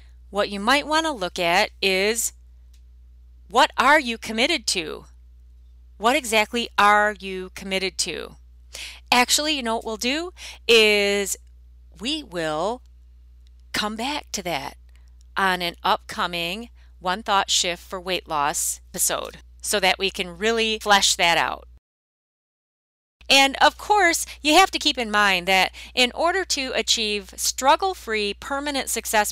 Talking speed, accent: 135 wpm, American